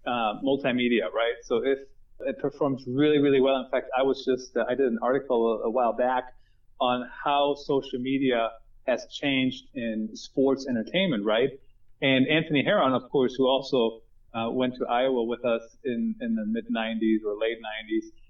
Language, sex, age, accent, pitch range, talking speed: English, male, 30-49, American, 120-155 Hz, 175 wpm